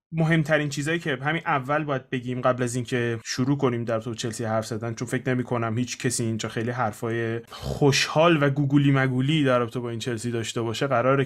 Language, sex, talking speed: Persian, male, 195 wpm